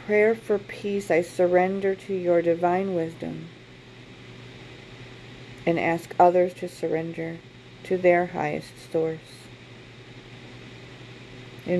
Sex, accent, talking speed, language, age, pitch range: female, American, 95 wpm, English, 40-59, 155-180 Hz